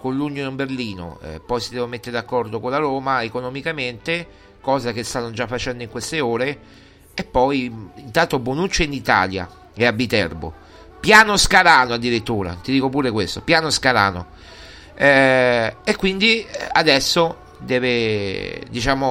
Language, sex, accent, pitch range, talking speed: Italian, male, native, 115-150 Hz, 145 wpm